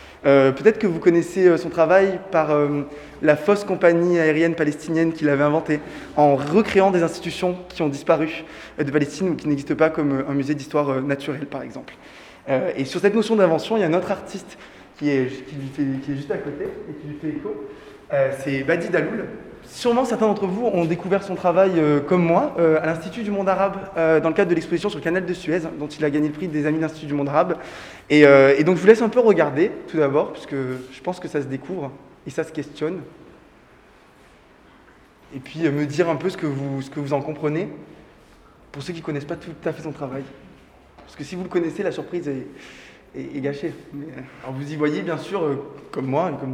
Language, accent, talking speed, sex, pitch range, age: French, French, 235 wpm, male, 145-180 Hz, 20-39